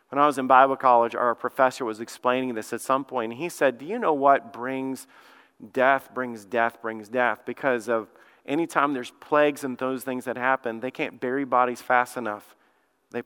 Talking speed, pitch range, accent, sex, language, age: 200 wpm, 125-145 Hz, American, male, English, 40-59